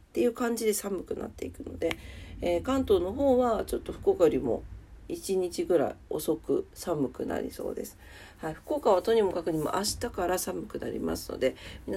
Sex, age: female, 40-59